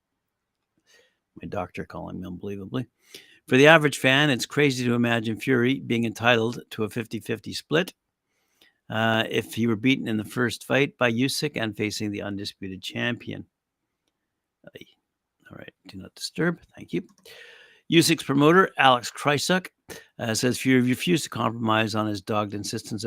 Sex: male